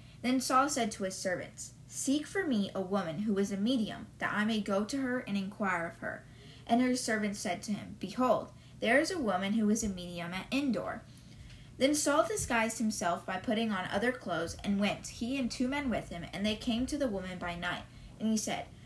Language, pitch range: English, 195-250 Hz